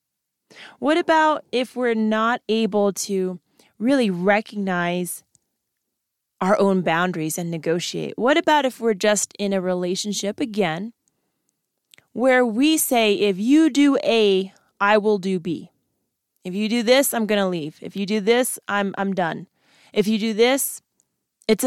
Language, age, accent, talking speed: English, 20-39, American, 150 wpm